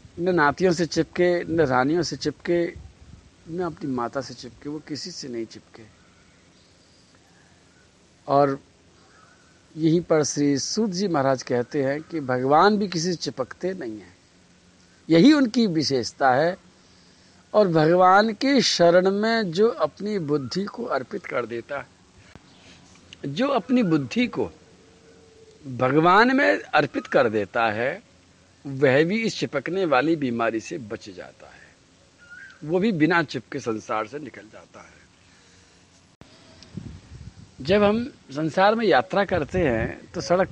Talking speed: 135 wpm